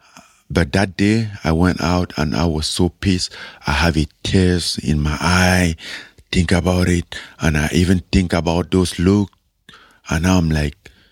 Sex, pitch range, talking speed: male, 80-100 Hz, 165 wpm